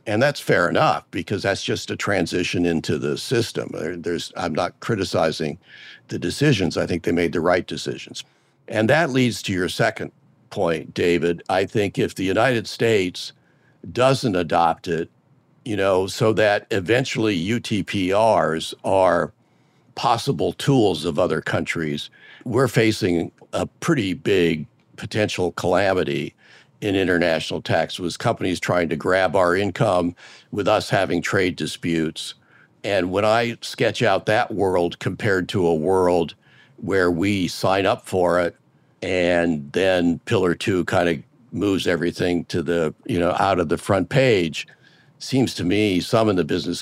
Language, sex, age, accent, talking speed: English, male, 50-69, American, 150 wpm